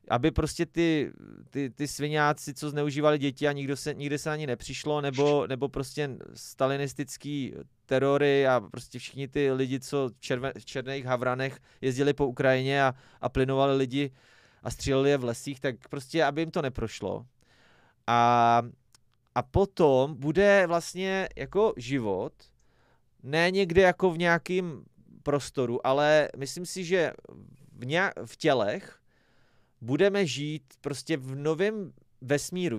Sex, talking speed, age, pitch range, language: male, 140 wpm, 30-49, 130-160 Hz, Czech